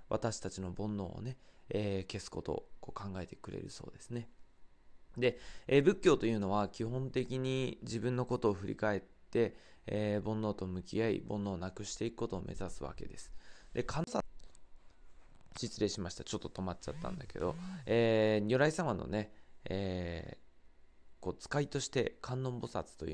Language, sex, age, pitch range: Japanese, male, 20-39, 95-115 Hz